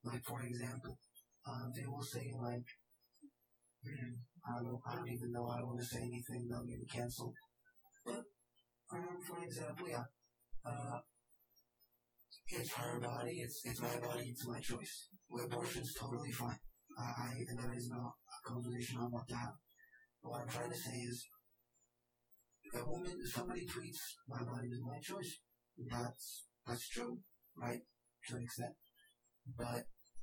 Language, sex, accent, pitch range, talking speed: English, male, American, 120-125 Hz, 160 wpm